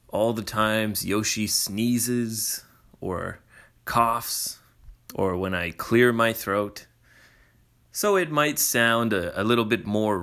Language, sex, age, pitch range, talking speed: English, male, 30-49, 95-120 Hz, 130 wpm